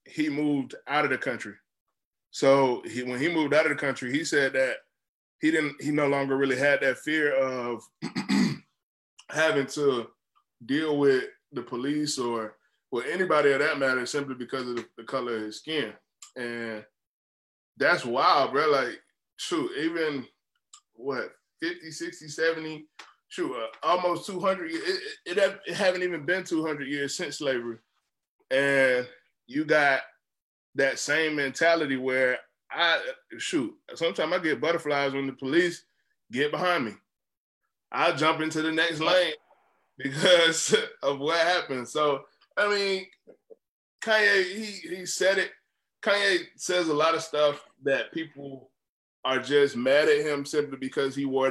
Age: 20-39